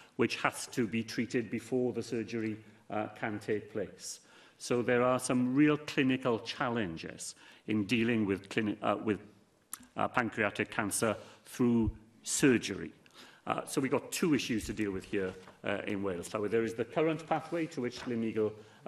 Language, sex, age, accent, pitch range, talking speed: English, male, 40-59, British, 115-135 Hz, 165 wpm